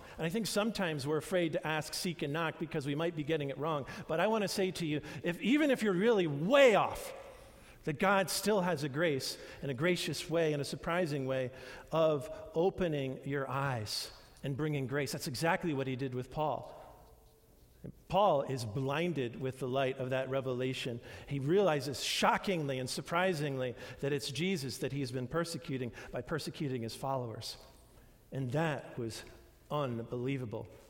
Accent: American